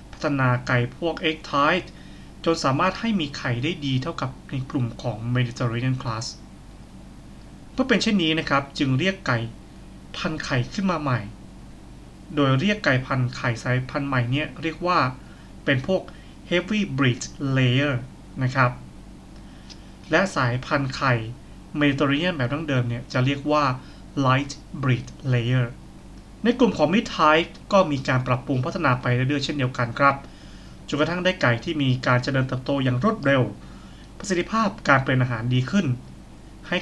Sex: male